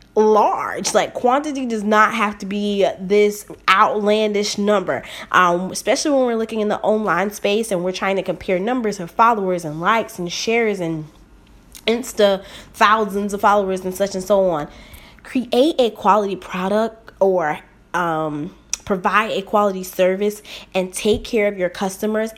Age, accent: 20-39, American